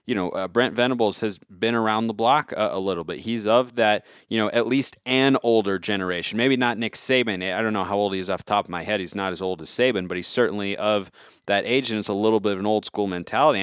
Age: 30-49